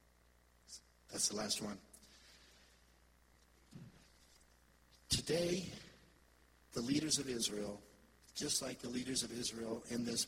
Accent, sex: American, male